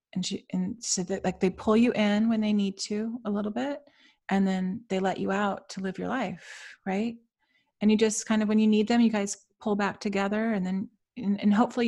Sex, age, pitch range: female, 30-49, 190-220 Hz